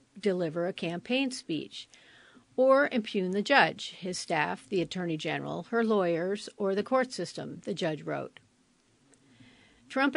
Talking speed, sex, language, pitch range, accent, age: 135 wpm, female, English, 175-225 Hz, American, 50-69